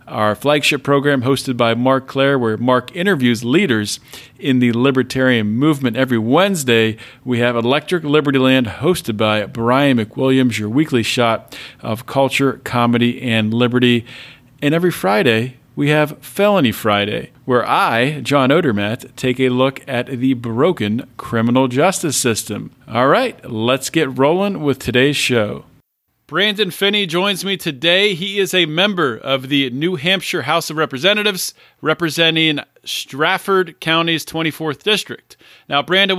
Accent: American